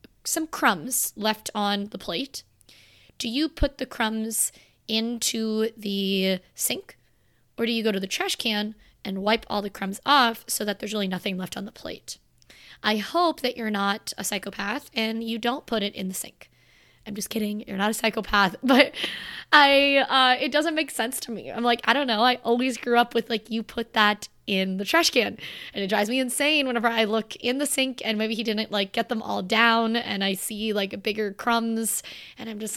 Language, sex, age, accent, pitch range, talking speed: English, female, 20-39, American, 210-250 Hz, 210 wpm